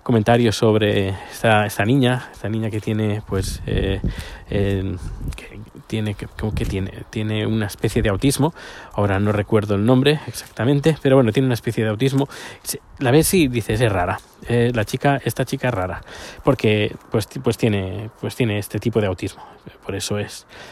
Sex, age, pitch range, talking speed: male, 20-39, 110-135 Hz, 175 wpm